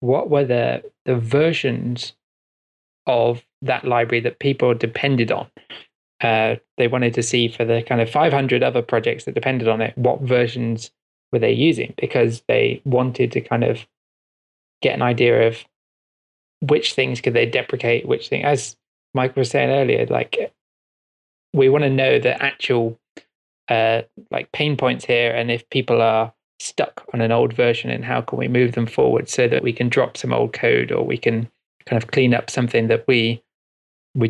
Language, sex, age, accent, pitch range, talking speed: English, male, 20-39, British, 115-135 Hz, 180 wpm